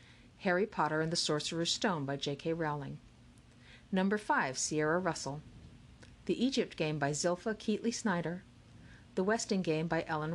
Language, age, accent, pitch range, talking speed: English, 50-69, American, 145-195 Hz, 145 wpm